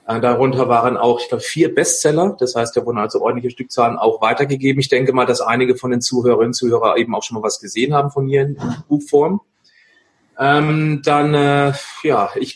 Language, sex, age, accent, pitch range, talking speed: German, male, 40-59, German, 125-165 Hz, 205 wpm